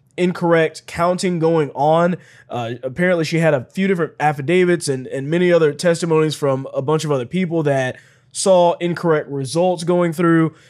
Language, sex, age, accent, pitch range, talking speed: English, male, 20-39, American, 145-180 Hz, 165 wpm